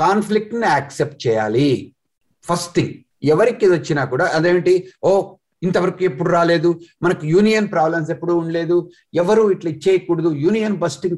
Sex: male